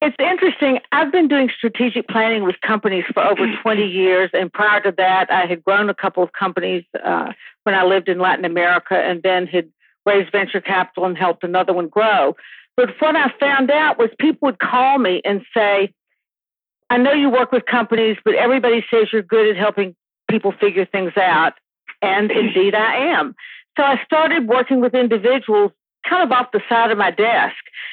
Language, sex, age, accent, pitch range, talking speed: English, female, 50-69, American, 195-255 Hz, 190 wpm